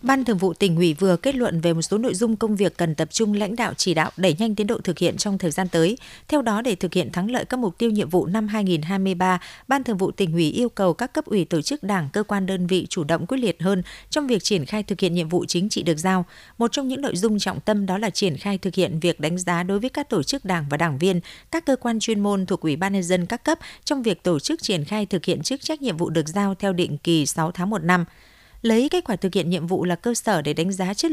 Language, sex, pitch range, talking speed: Vietnamese, female, 180-225 Hz, 295 wpm